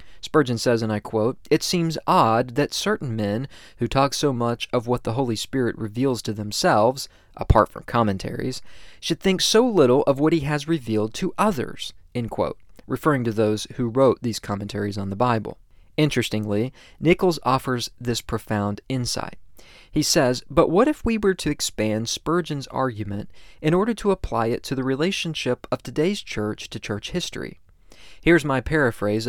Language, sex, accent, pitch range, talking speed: English, male, American, 115-160 Hz, 170 wpm